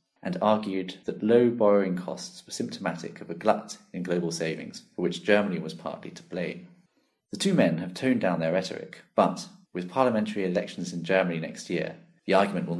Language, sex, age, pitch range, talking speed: English, male, 40-59, 85-110 Hz, 190 wpm